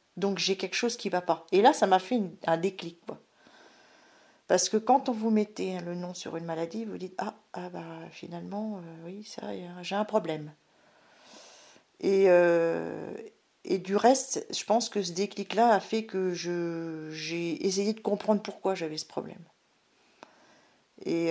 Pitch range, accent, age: 170-215 Hz, French, 40-59